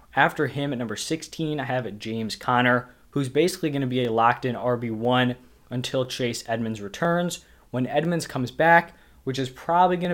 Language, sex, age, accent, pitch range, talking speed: English, male, 20-39, American, 120-140 Hz, 170 wpm